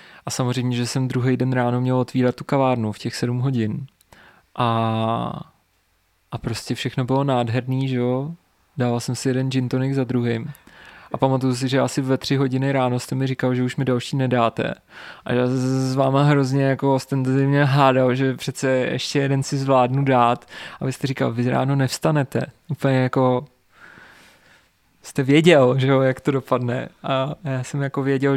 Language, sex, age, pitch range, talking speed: Czech, male, 20-39, 125-140 Hz, 175 wpm